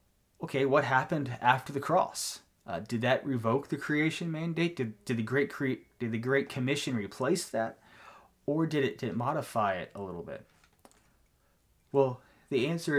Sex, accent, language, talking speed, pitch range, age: male, American, English, 170 wpm, 110-140 Hz, 20-39